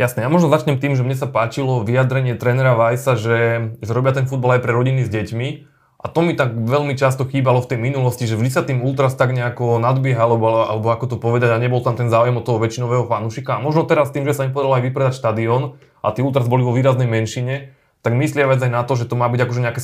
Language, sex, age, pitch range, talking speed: Slovak, male, 20-39, 115-130 Hz, 255 wpm